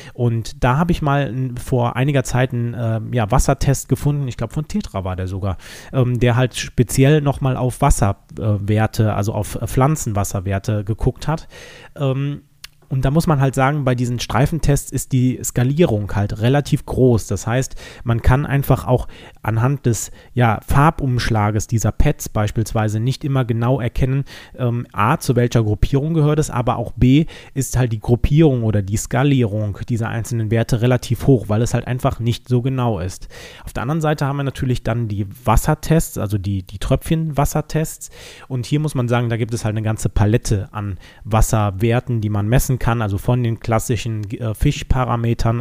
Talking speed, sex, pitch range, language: 175 wpm, male, 110-135 Hz, German